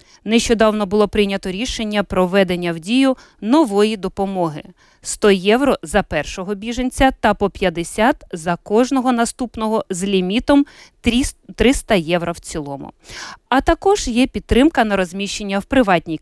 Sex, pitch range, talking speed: female, 180-250 Hz, 130 wpm